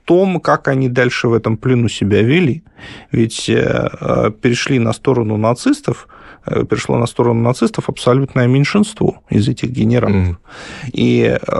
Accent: native